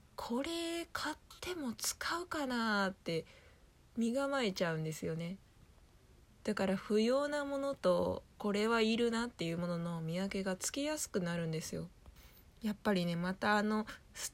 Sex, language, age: female, Japanese, 20-39